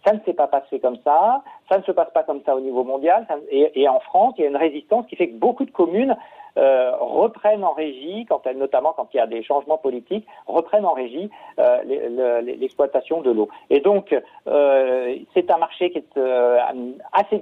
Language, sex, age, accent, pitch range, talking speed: French, male, 50-69, French, 135-200 Hz, 195 wpm